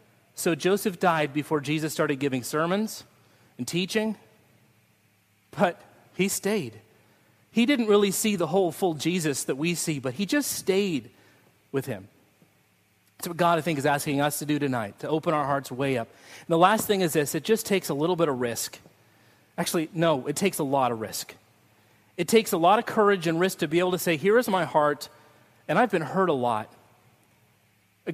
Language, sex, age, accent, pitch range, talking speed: English, male, 40-59, American, 125-175 Hz, 200 wpm